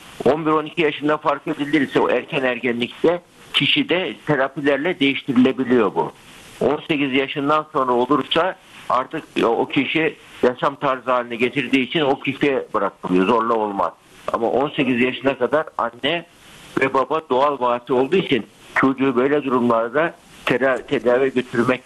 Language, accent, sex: Turkish, native, male